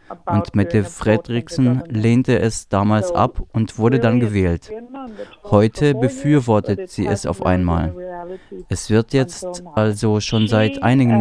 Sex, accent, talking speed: male, German, 130 wpm